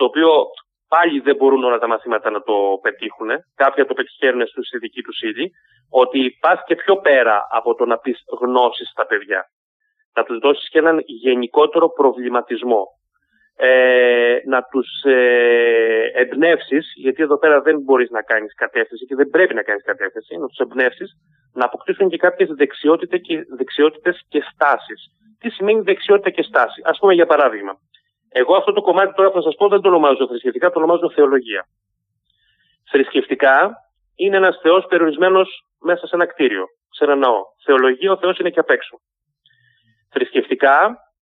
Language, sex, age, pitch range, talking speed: Greek, male, 30-49, 130-195 Hz, 160 wpm